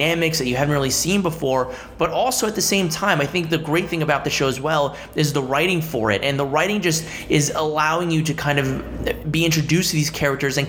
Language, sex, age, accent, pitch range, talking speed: English, male, 20-39, American, 130-160 Hz, 240 wpm